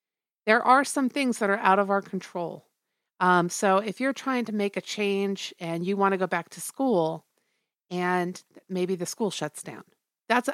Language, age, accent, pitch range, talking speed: English, 50-69, American, 180-230 Hz, 190 wpm